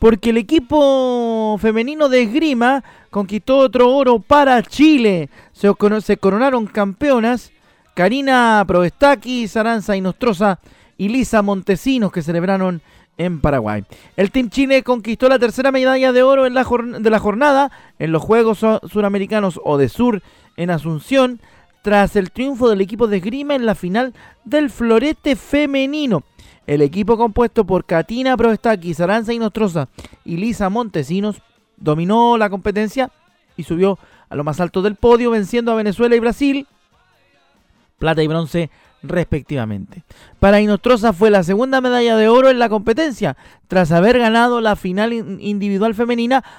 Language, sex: Spanish, male